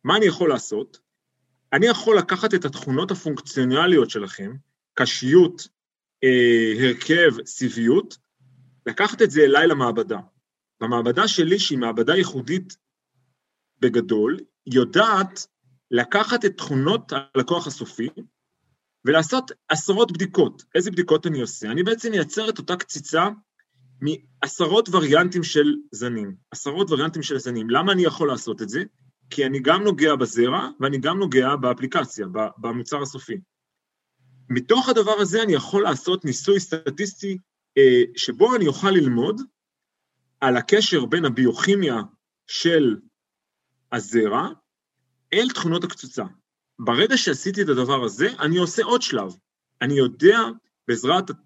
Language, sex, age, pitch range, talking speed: Hebrew, male, 30-49, 130-195 Hz, 120 wpm